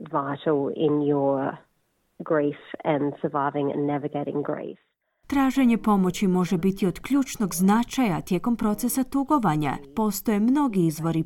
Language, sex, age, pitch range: Croatian, female, 20-39, 170-235 Hz